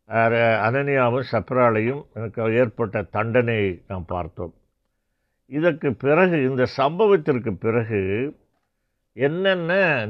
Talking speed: 75 wpm